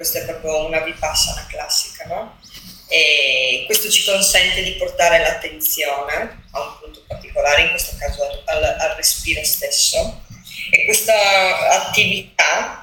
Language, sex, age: Italian, female, 20-39